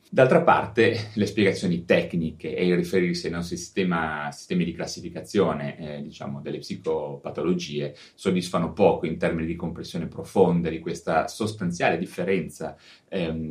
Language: Italian